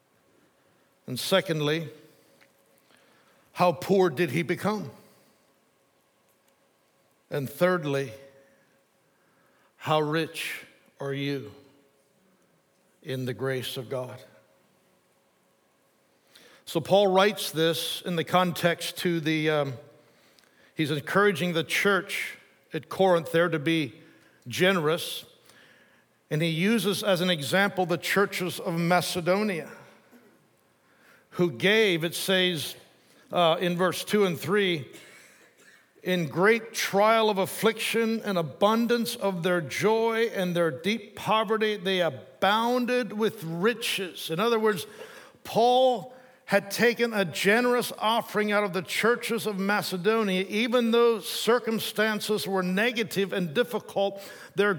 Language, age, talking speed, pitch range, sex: English, 60-79, 110 wpm, 165-220 Hz, male